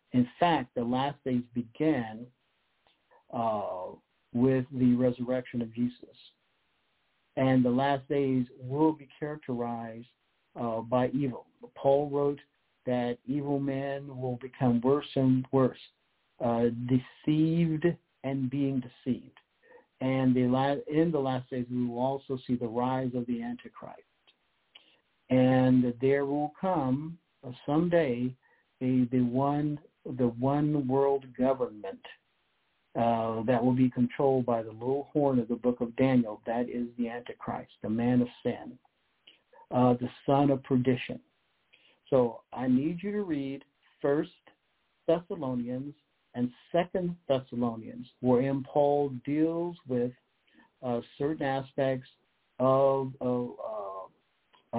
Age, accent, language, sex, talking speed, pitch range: 60-79, American, English, male, 125 wpm, 125-140 Hz